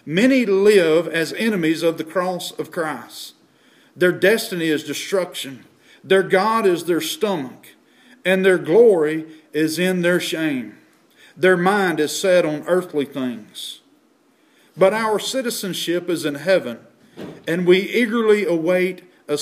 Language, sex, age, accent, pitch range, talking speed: English, male, 40-59, American, 155-210 Hz, 135 wpm